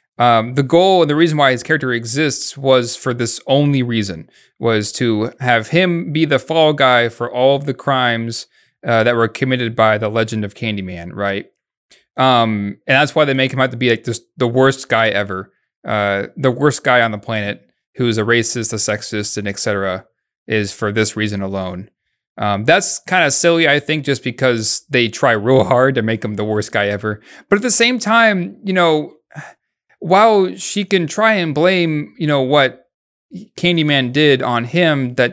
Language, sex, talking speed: English, male, 195 wpm